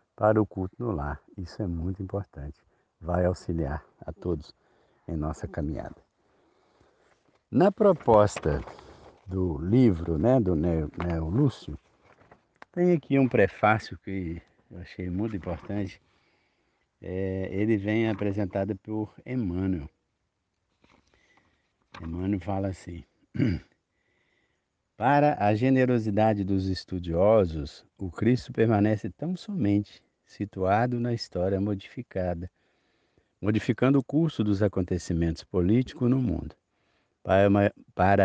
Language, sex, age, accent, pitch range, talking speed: Portuguese, male, 60-79, Brazilian, 85-110 Hz, 100 wpm